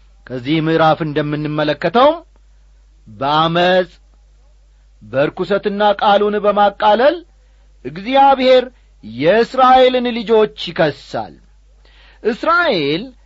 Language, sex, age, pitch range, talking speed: Amharic, male, 40-59, 150-240 Hz, 55 wpm